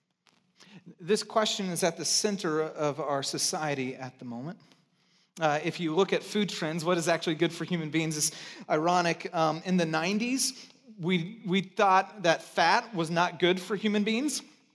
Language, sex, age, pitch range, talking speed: English, male, 30-49, 160-210 Hz, 175 wpm